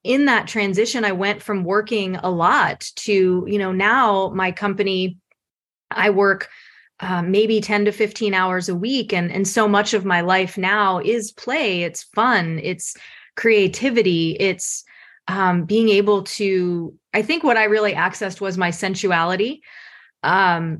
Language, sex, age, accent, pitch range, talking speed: English, female, 20-39, American, 175-210 Hz, 155 wpm